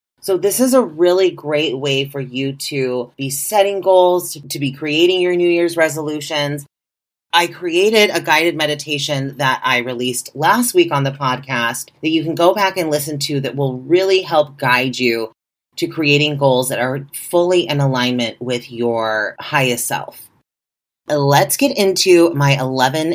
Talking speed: 165 wpm